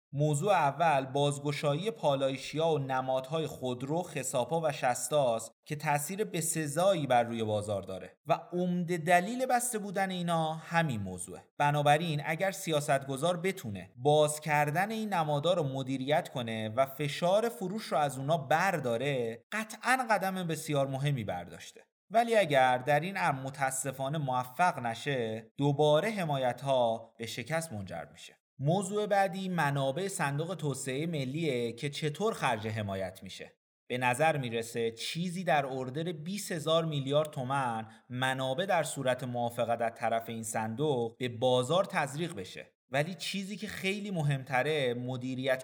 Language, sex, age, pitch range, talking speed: Persian, male, 30-49, 125-170 Hz, 135 wpm